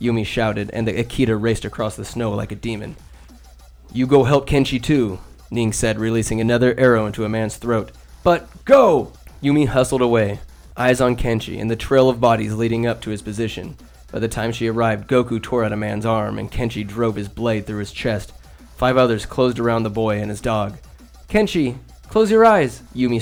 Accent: American